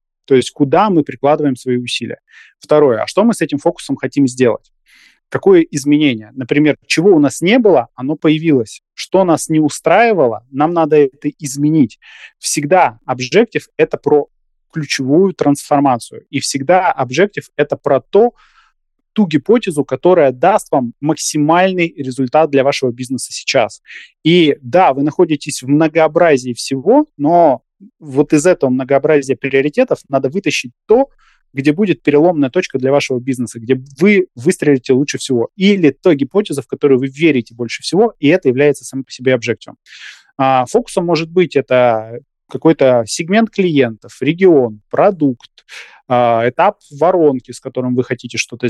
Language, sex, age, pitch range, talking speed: Russian, male, 20-39, 130-165 Hz, 145 wpm